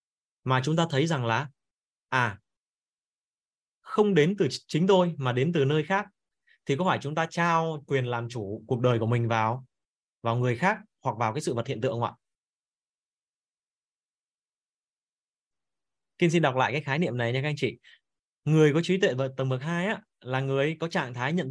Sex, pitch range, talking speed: male, 120-160 Hz, 195 wpm